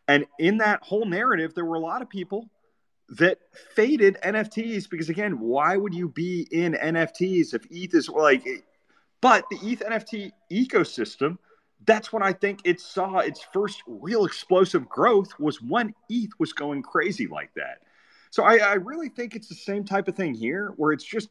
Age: 30-49